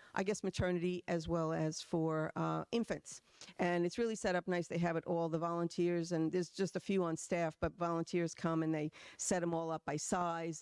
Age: 50-69